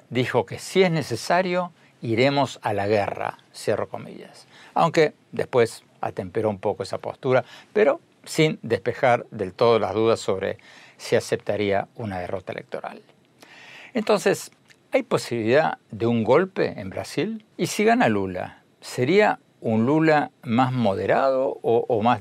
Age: 60-79